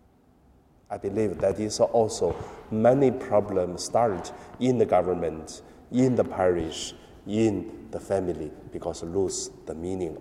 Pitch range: 85-115 Hz